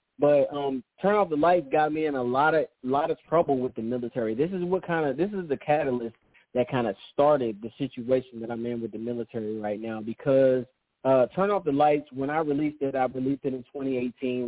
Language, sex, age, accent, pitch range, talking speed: English, male, 20-39, American, 130-165 Hz, 230 wpm